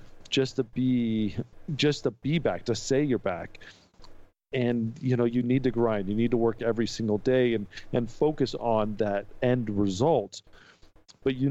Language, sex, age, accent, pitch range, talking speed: English, male, 40-59, American, 115-135 Hz, 175 wpm